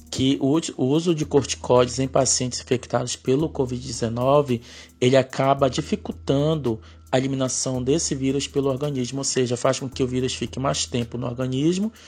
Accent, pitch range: Brazilian, 115-145 Hz